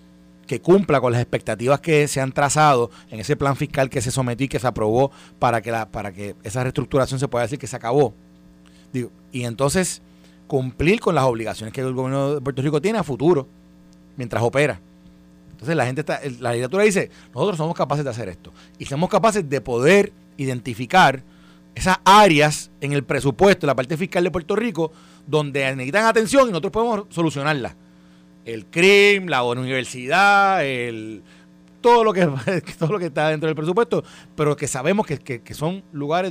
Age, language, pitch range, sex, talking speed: 30-49, Spanish, 100-155 Hz, male, 185 wpm